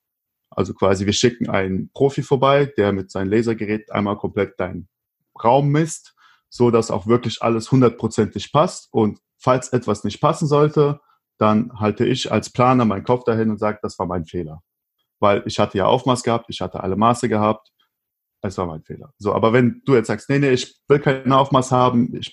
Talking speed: 195 wpm